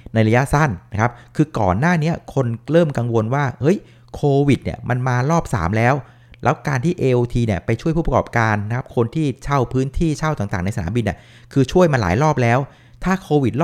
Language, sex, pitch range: Thai, male, 110-145 Hz